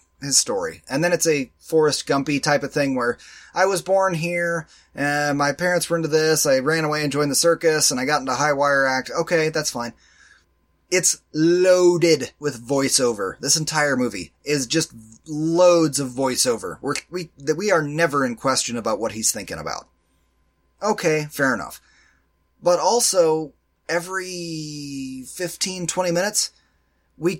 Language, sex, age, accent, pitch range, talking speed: English, male, 30-49, American, 135-175 Hz, 160 wpm